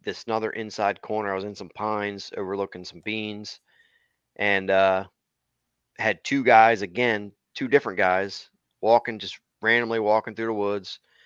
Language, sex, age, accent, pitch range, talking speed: English, male, 30-49, American, 95-115 Hz, 150 wpm